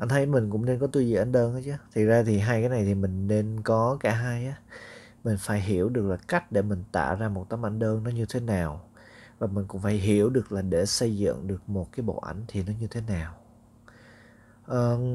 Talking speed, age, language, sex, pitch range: 255 wpm, 20-39, Vietnamese, male, 105-125 Hz